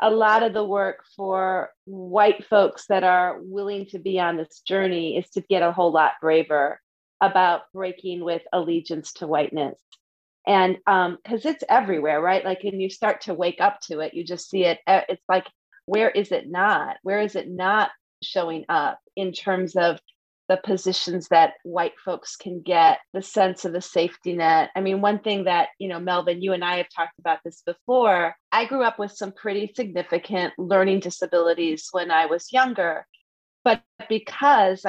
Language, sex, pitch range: English, female, 175-200 Hz